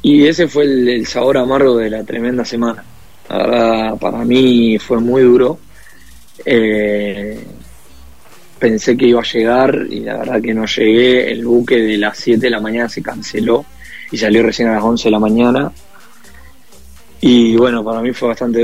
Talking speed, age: 175 wpm, 20-39